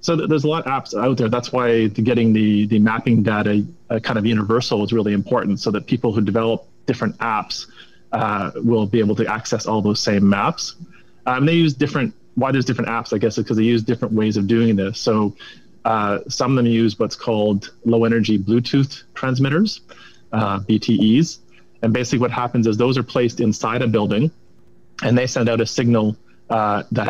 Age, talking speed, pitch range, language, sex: 30-49, 205 wpm, 105-115 Hz, English, male